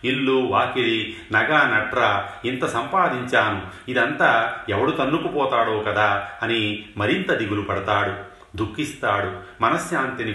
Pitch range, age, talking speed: 100-120 Hz, 40-59, 95 wpm